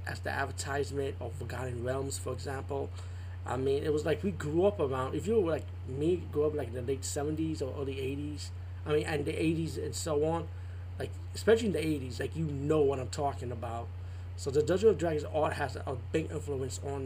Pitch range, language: 90-130 Hz, English